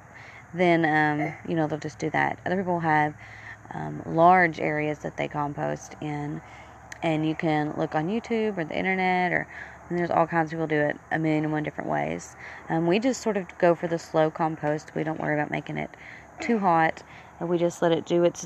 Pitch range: 150-175 Hz